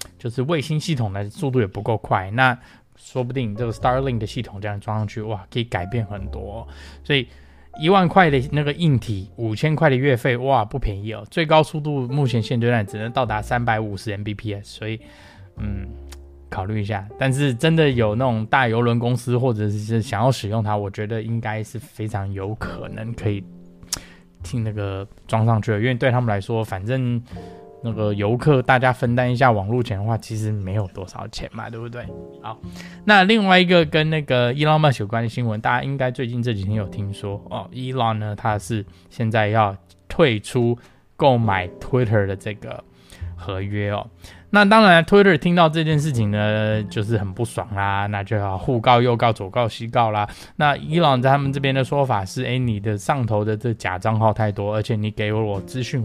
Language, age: Chinese, 20-39